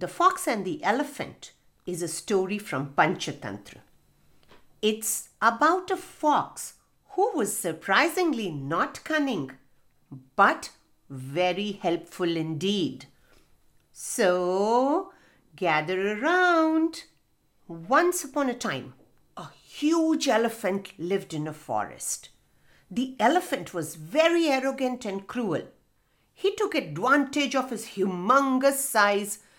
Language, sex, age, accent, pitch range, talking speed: English, female, 50-69, Indian, 185-295 Hz, 105 wpm